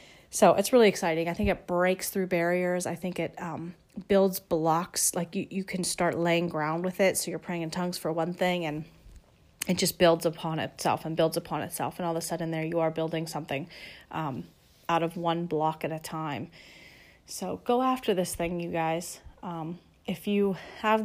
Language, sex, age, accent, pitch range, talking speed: English, female, 30-49, American, 165-190 Hz, 205 wpm